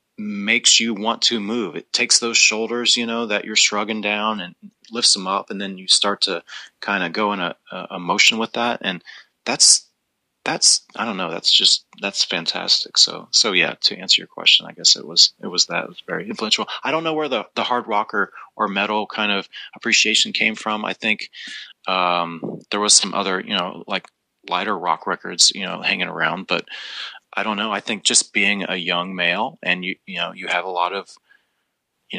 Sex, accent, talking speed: male, American, 210 wpm